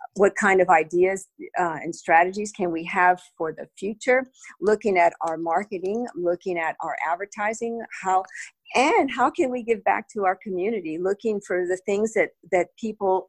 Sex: female